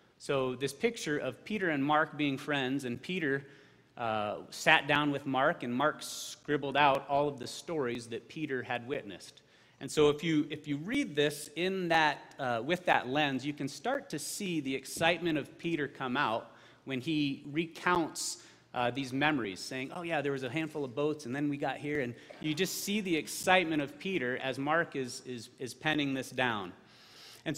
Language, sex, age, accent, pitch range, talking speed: English, male, 30-49, American, 125-160 Hz, 195 wpm